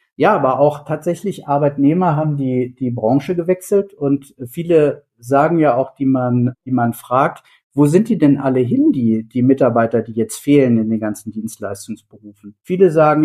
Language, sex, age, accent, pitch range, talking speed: German, male, 50-69, German, 125-155 Hz, 170 wpm